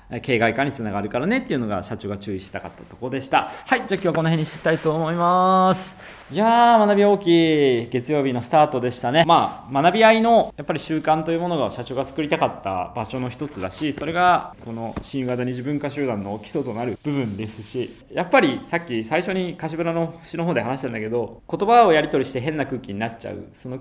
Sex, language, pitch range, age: male, Japanese, 110-165 Hz, 20-39